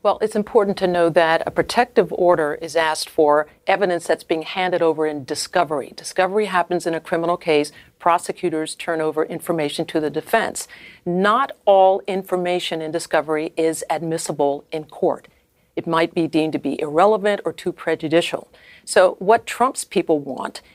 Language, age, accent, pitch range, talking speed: English, 50-69, American, 165-200 Hz, 160 wpm